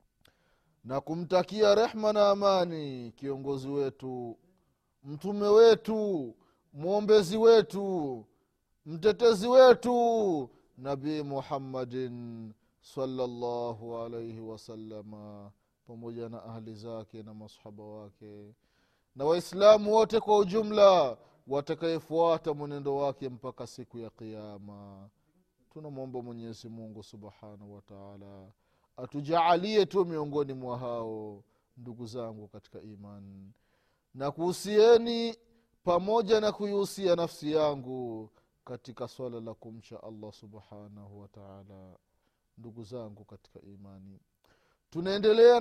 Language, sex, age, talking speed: Swahili, male, 30-49, 95 wpm